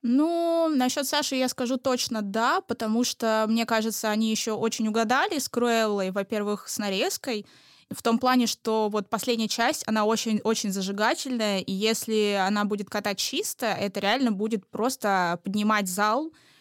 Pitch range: 210-255 Hz